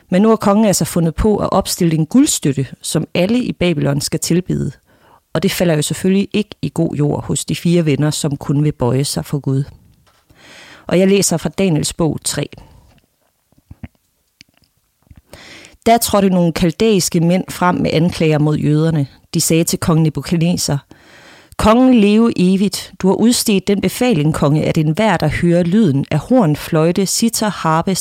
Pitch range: 155-200 Hz